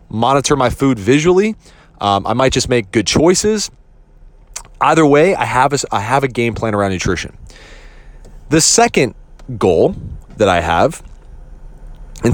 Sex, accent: male, American